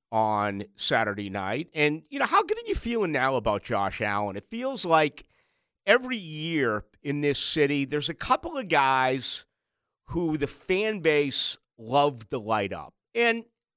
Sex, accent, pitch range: male, American, 130-170 Hz